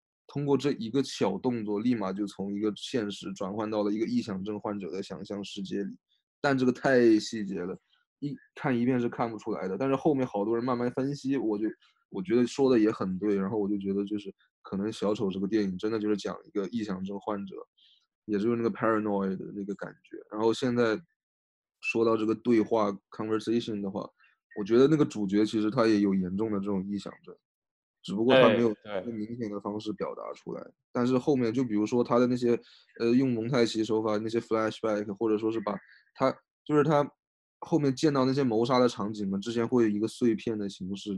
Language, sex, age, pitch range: Chinese, male, 20-39, 100-125 Hz